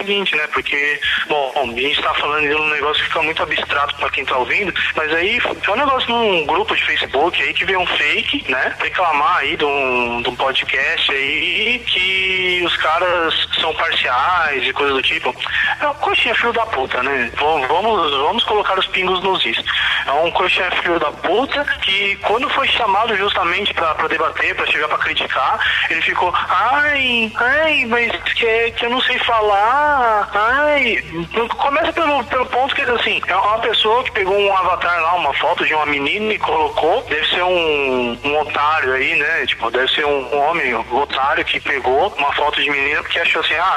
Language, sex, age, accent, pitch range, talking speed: Portuguese, male, 20-39, Brazilian, 155-245 Hz, 195 wpm